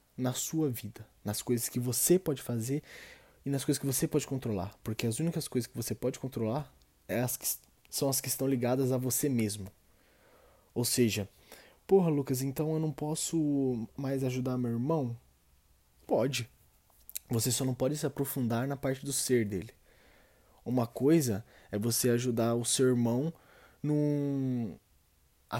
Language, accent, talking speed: Portuguese, Brazilian, 150 wpm